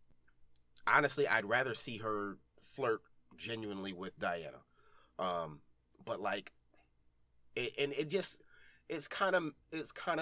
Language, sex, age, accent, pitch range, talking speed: English, male, 30-49, American, 110-155 Hz, 125 wpm